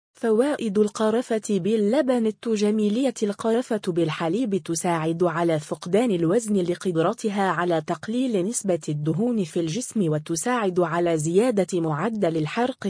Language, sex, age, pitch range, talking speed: Arabic, female, 20-39, 170-225 Hz, 100 wpm